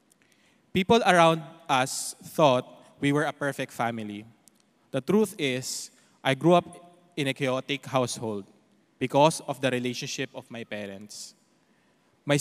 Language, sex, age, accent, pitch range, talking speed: English, male, 20-39, Filipino, 125-160 Hz, 130 wpm